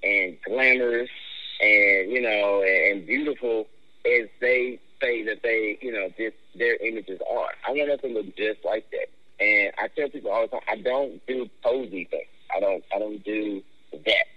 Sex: male